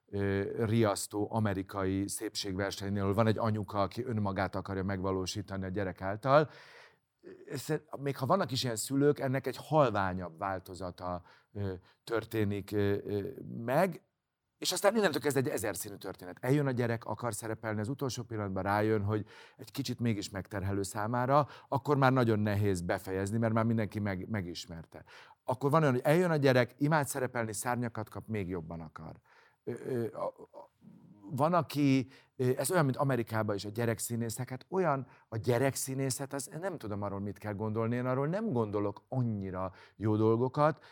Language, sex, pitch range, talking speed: Hungarian, male, 100-130 Hz, 145 wpm